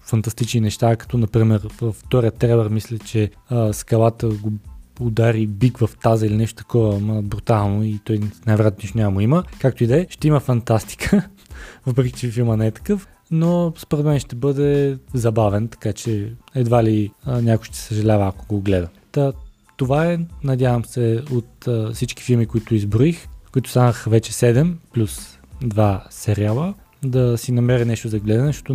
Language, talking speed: Bulgarian, 170 wpm